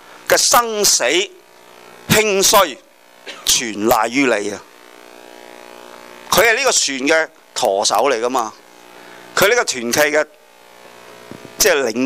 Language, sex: Chinese, male